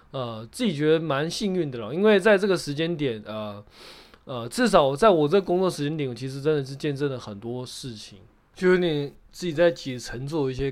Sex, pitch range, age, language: male, 120-165 Hz, 20-39, Chinese